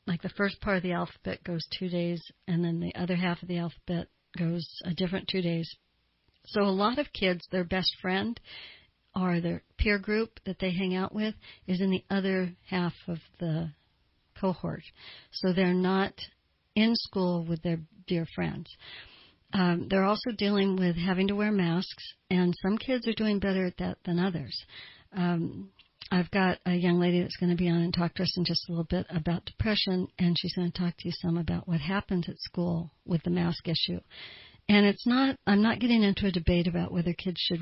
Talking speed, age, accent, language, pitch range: 205 wpm, 60-79, American, English, 170-190 Hz